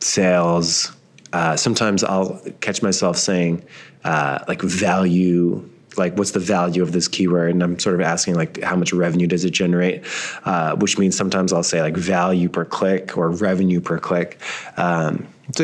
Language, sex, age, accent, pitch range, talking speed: English, male, 20-39, American, 85-100 Hz, 170 wpm